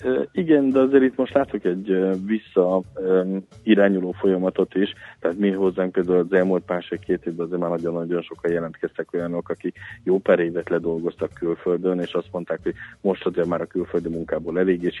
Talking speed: 175 wpm